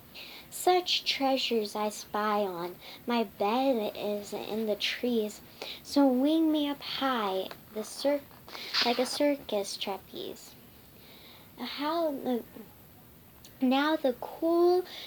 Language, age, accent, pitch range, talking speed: English, 10-29, American, 210-265 Hz, 110 wpm